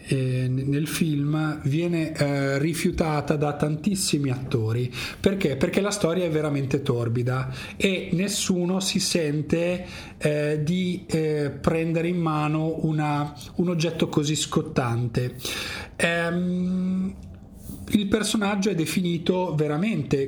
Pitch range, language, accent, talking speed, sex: 130-165 Hz, Italian, native, 105 wpm, male